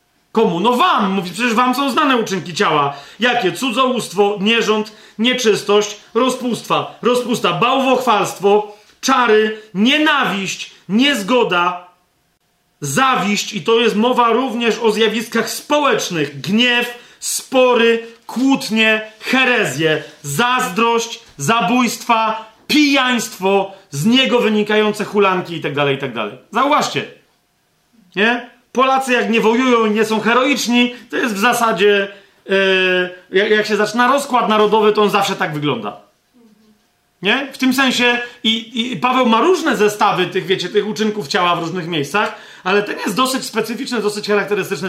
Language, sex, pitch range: Polish, male, 200-240 Hz